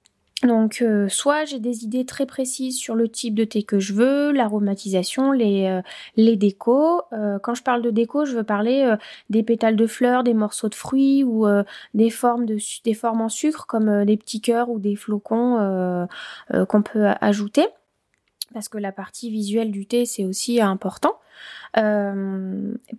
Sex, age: female, 20-39